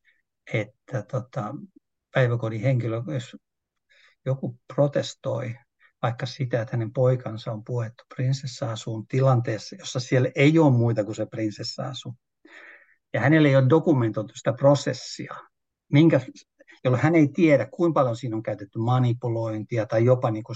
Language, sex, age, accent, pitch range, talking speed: Finnish, male, 60-79, native, 115-135 Hz, 130 wpm